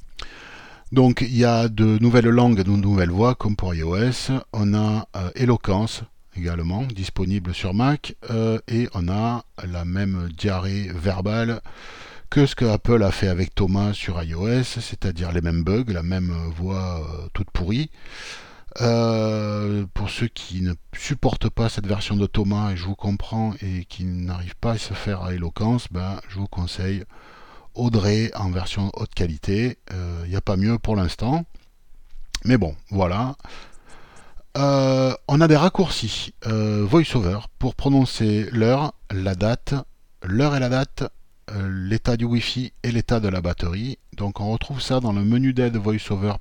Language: French